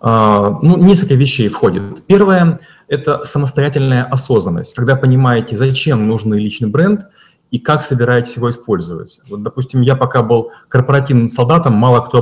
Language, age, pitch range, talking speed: Russian, 30-49, 120-140 Hz, 140 wpm